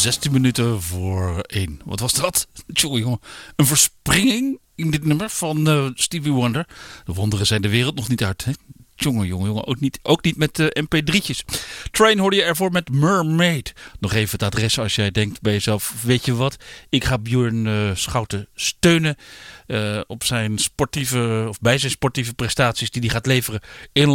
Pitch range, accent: 110-155 Hz, Dutch